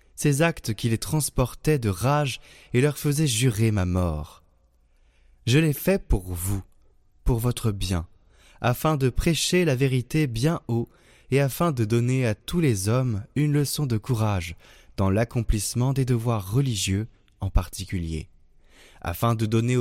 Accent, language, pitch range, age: French, French, 95-135 Hz, 20-39